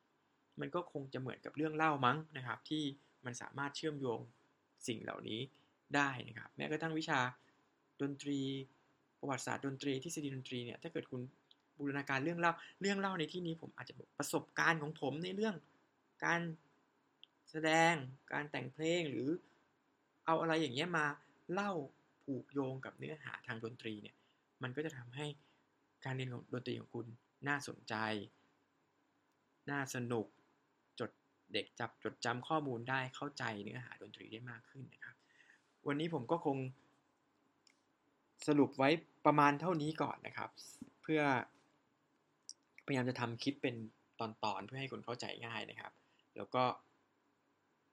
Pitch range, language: 125-155 Hz, Thai